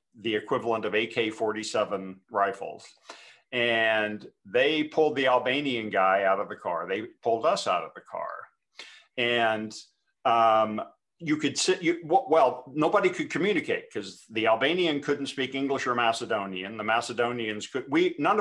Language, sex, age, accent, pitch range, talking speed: English, male, 50-69, American, 110-150 Hz, 145 wpm